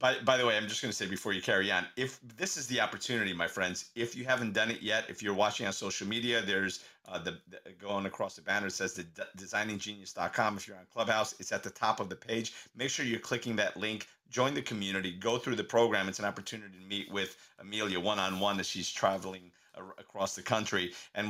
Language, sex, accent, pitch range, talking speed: English, male, American, 100-115 Hz, 235 wpm